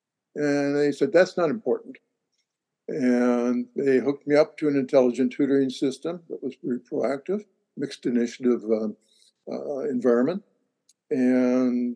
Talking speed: 130 wpm